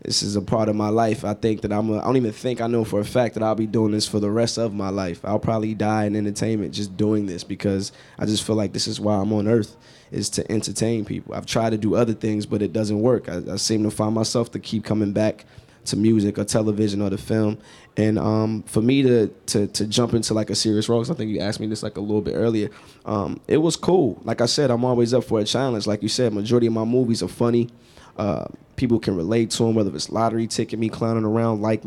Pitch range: 105-120 Hz